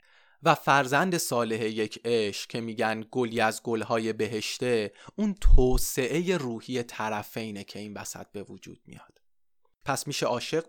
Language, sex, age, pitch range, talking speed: Persian, male, 30-49, 115-155 Hz, 135 wpm